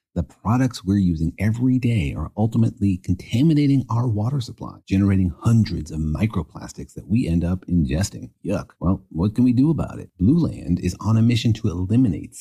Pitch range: 90-120 Hz